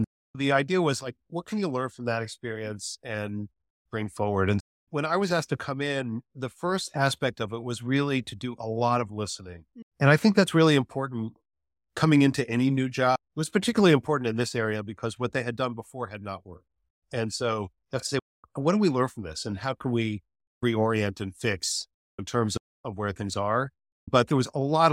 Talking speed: 215 wpm